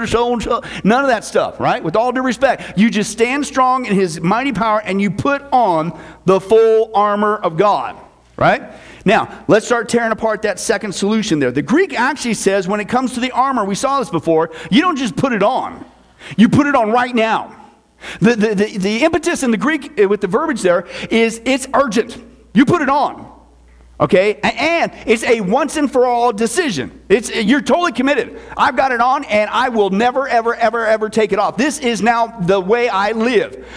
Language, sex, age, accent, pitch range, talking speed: English, male, 50-69, American, 205-260 Hz, 205 wpm